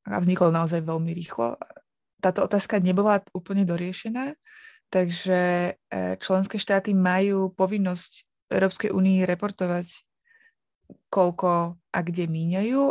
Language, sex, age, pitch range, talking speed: Slovak, female, 20-39, 175-200 Hz, 100 wpm